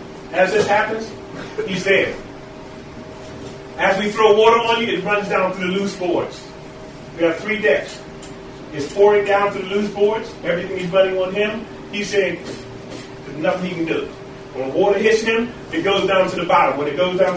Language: English